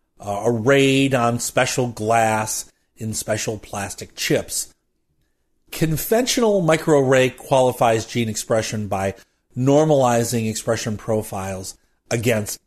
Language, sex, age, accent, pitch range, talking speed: English, male, 40-59, American, 105-140 Hz, 90 wpm